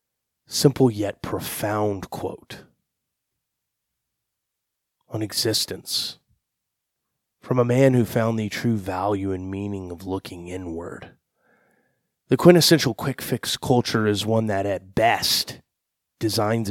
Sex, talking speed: male, 110 wpm